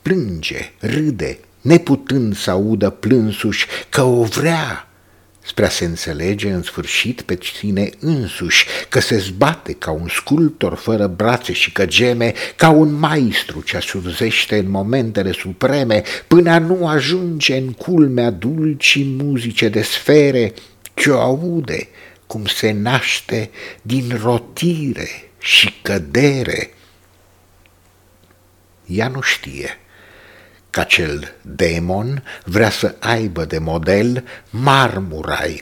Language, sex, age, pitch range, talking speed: English, male, 60-79, 95-135 Hz, 115 wpm